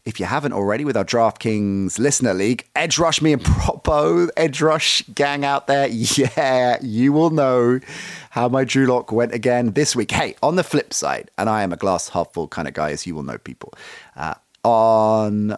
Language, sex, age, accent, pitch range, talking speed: English, male, 30-49, British, 100-130 Hz, 205 wpm